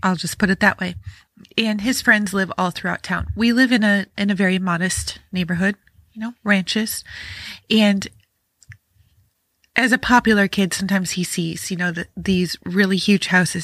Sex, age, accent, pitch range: female, 20-39, American, 180-210 Hz